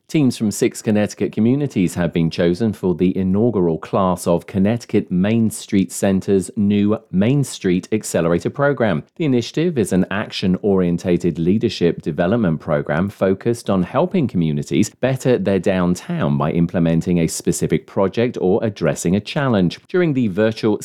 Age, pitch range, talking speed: 40-59, 85-115 Hz, 145 wpm